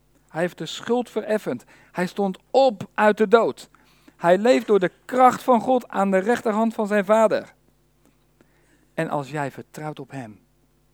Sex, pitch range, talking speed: male, 140-205 Hz, 165 wpm